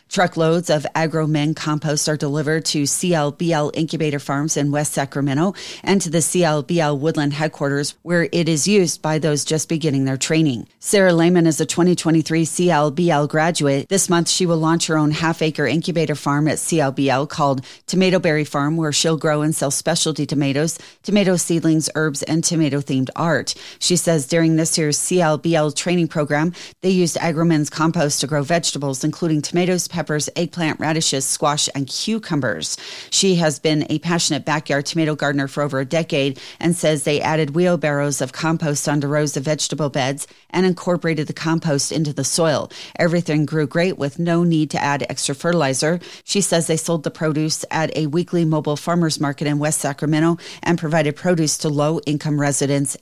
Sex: female